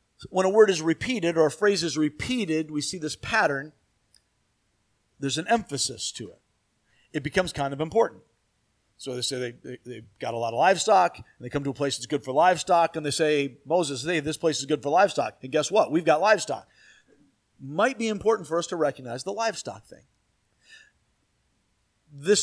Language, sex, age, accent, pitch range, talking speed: English, male, 40-59, American, 130-170 Hz, 195 wpm